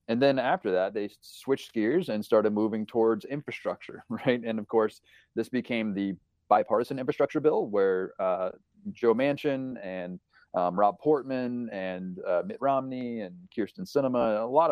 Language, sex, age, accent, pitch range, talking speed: English, male, 30-49, American, 100-135 Hz, 160 wpm